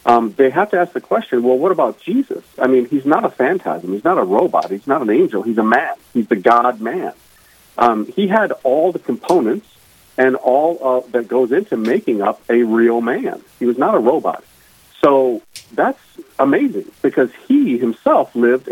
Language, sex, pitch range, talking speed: English, male, 120-180 Hz, 190 wpm